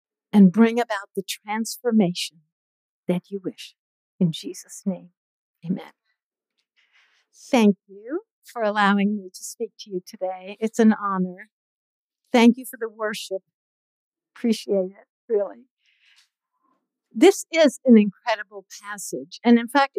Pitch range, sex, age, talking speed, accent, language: 200-265 Hz, female, 60-79, 125 wpm, American, English